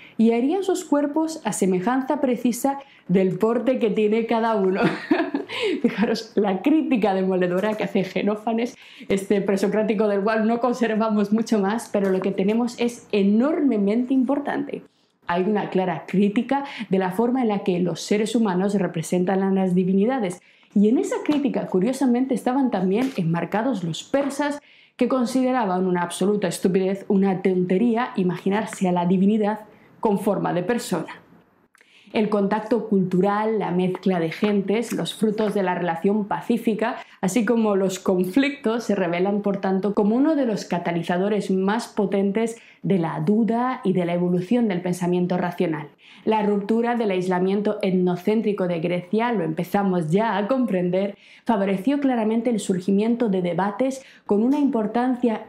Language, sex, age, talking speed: Spanish, female, 20-39, 145 wpm